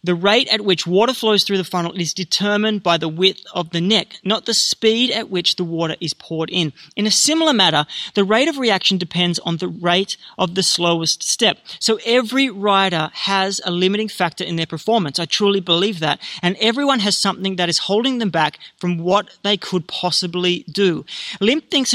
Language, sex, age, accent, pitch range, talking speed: English, male, 30-49, Australian, 175-220 Hz, 200 wpm